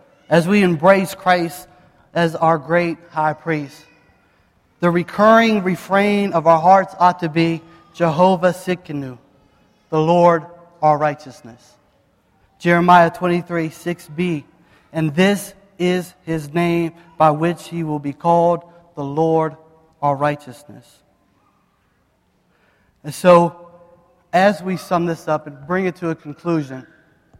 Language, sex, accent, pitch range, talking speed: English, male, American, 155-185 Hz, 120 wpm